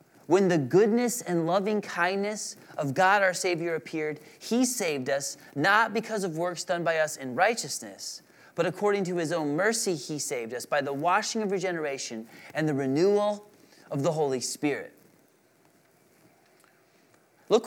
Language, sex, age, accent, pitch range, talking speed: English, male, 30-49, American, 160-215 Hz, 155 wpm